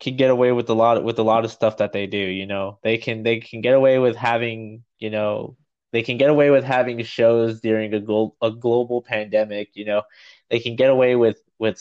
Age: 20-39